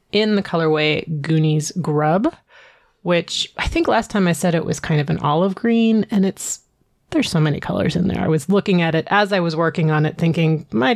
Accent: American